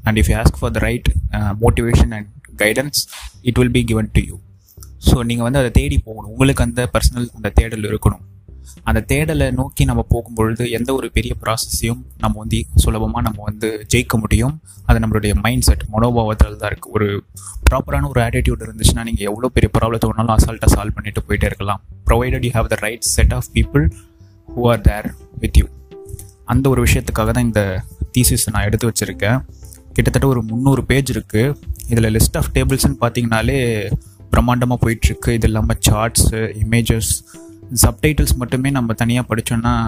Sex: male